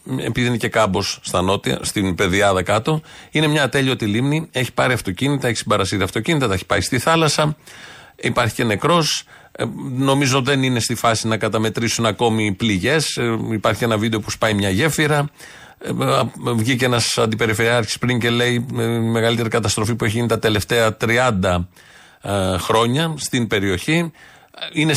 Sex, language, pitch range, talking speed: male, Greek, 110-145 Hz, 150 wpm